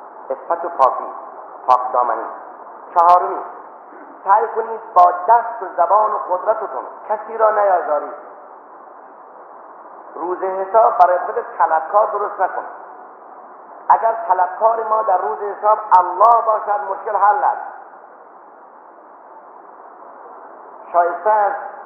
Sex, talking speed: male, 95 wpm